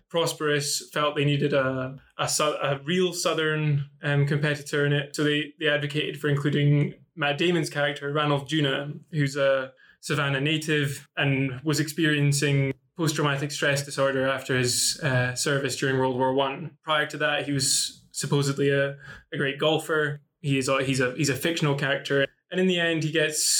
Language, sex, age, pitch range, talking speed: English, male, 20-39, 135-150 Hz, 175 wpm